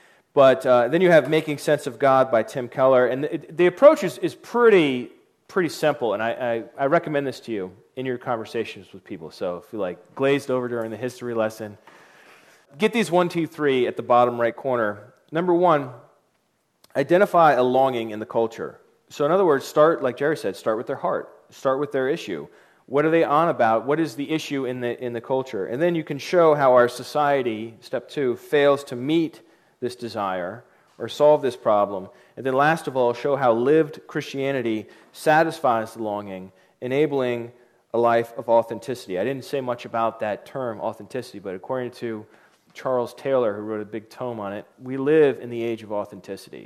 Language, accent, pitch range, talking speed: English, American, 115-150 Hz, 200 wpm